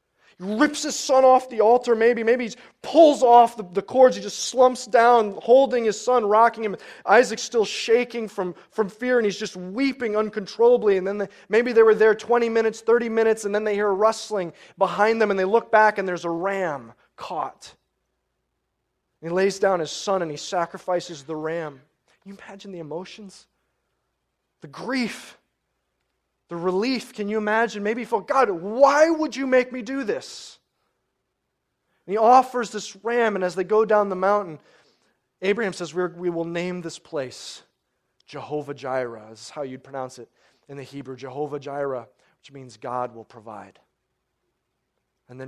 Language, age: English, 20-39